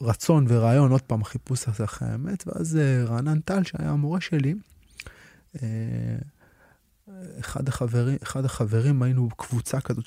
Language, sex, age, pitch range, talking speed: Hebrew, male, 20-39, 110-135 Hz, 130 wpm